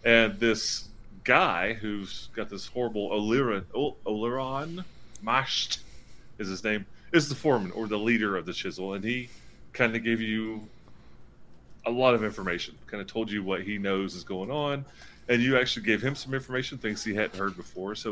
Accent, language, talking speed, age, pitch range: American, English, 180 wpm, 30-49, 100-125 Hz